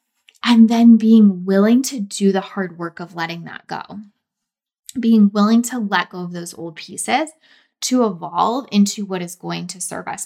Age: 20-39